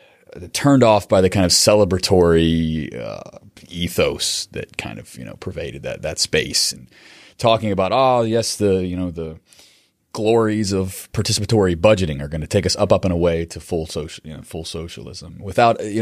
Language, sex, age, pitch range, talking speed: English, male, 30-49, 85-105 Hz, 185 wpm